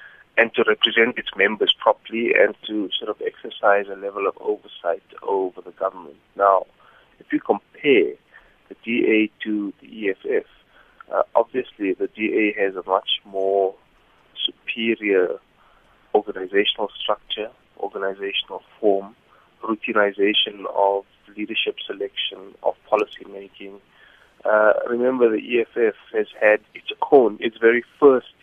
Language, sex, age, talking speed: English, male, 30-49, 120 wpm